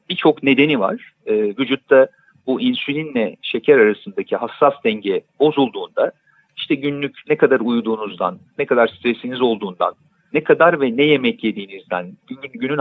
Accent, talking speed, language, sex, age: native, 135 wpm, Turkish, male, 50-69